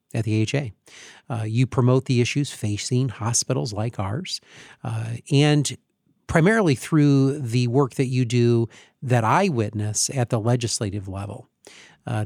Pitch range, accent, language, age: 115-135 Hz, American, English, 40-59